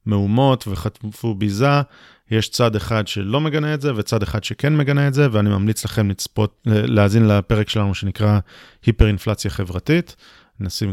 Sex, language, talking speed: male, Hebrew, 155 wpm